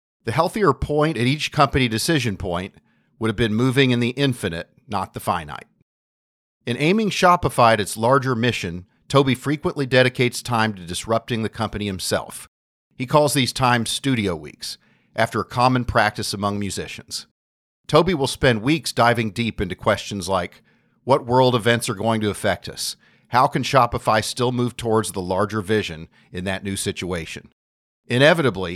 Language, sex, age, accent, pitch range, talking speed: English, male, 50-69, American, 95-130 Hz, 160 wpm